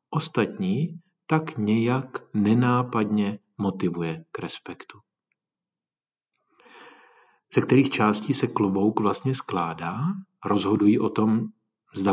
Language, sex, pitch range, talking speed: Czech, male, 100-130 Hz, 90 wpm